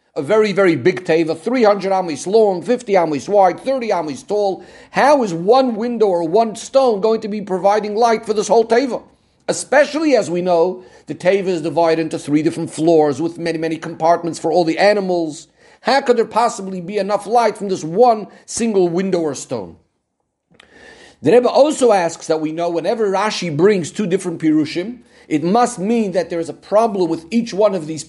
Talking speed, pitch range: 190 wpm, 170-235 Hz